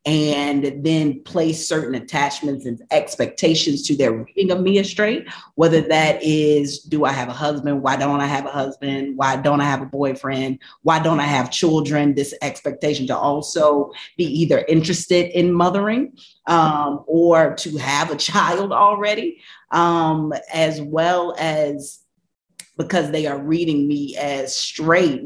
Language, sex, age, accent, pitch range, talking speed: English, female, 30-49, American, 135-160 Hz, 155 wpm